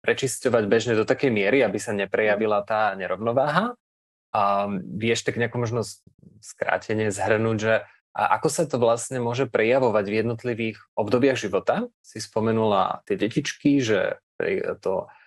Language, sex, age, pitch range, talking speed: Slovak, male, 20-39, 105-120 Hz, 135 wpm